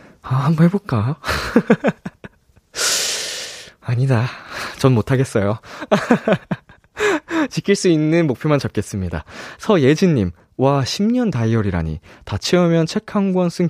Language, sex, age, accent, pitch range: Korean, male, 20-39, native, 110-170 Hz